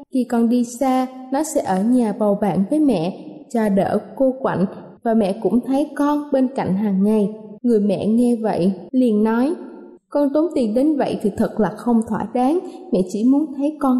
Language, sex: Vietnamese, female